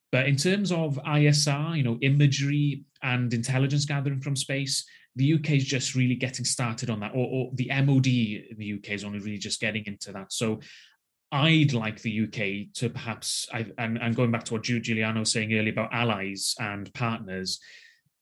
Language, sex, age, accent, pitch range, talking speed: English, male, 30-49, British, 110-135 Hz, 190 wpm